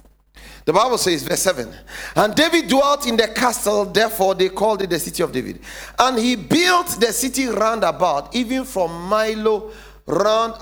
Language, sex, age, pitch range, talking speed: English, male, 40-59, 195-270 Hz, 170 wpm